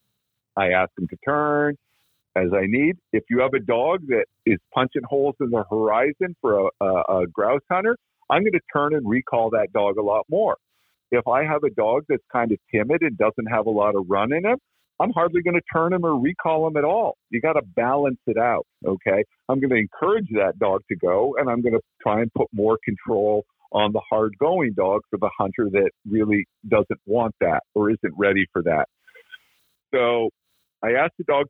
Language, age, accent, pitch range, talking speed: English, 50-69, American, 105-140 Hz, 215 wpm